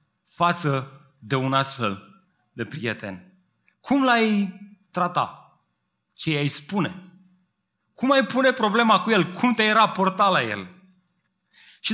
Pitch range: 150-195 Hz